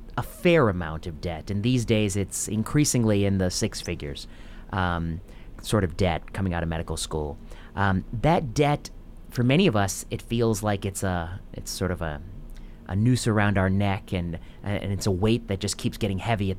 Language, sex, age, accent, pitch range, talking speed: English, male, 30-49, American, 95-115 Hz, 200 wpm